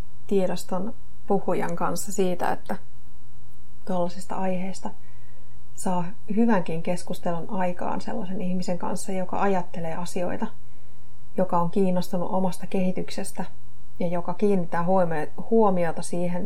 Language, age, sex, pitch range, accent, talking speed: Finnish, 30-49, female, 170-190 Hz, native, 100 wpm